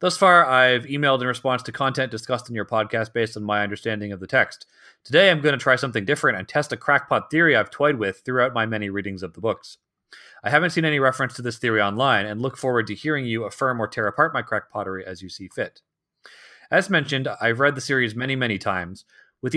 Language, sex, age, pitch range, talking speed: English, male, 30-49, 105-130 Hz, 235 wpm